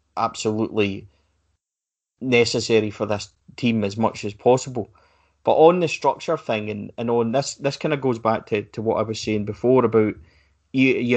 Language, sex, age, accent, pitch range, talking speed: English, male, 30-49, British, 105-120 Hz, 175 wpm